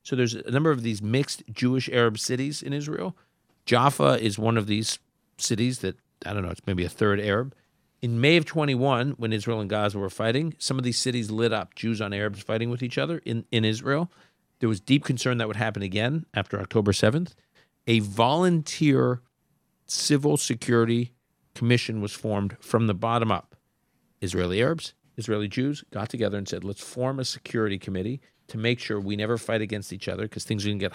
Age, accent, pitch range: 50-69, American, 105-135 Hz